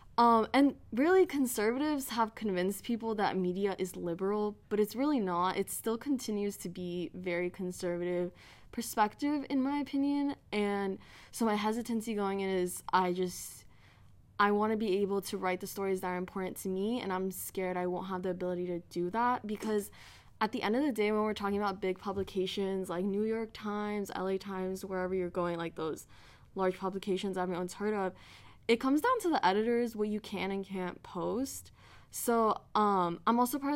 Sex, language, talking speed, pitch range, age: female, English, 190 wpm, 185-220 Hz, 10-29